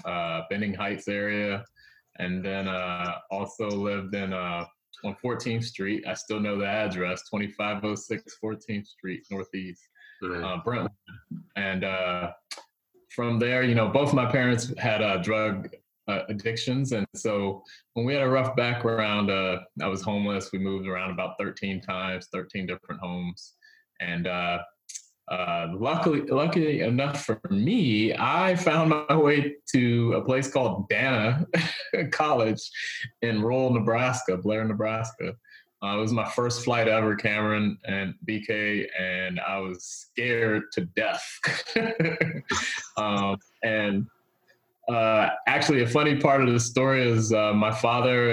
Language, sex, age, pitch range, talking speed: English, male, 20-39, 100-125 Hz, 140 wpm